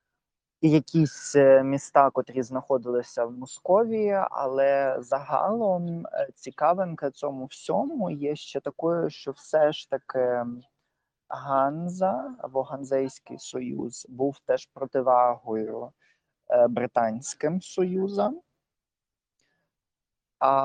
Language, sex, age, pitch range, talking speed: Ukrainian, male, 20-39, 125-160 Hz, 85 wpm